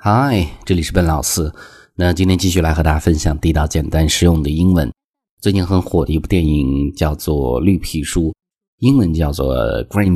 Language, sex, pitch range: Chinese, male, 80-95 Hz